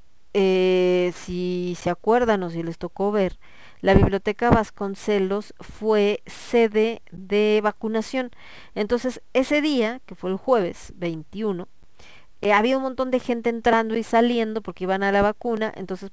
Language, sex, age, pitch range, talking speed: Spanish, female, 40-59, 180-225 Hz, 150 wpm